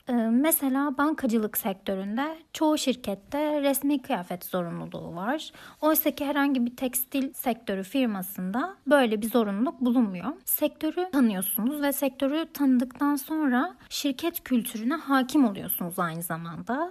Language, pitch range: Turkish, 225-285 Hz